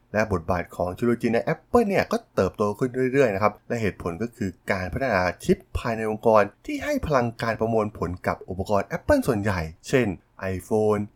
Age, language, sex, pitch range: 20-39, Thai, male, 95-150 Hz